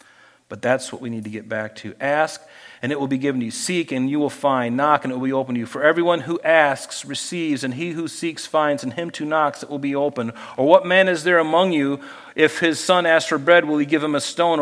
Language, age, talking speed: English, 40-59, 275 wpm